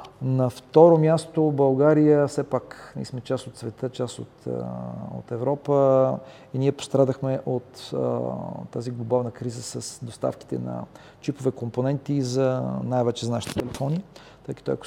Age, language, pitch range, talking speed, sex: 40-59, Bulgarian, 115-135 Hz, 150 wpm, male